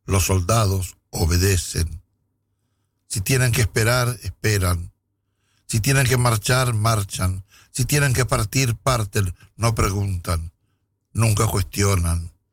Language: Polish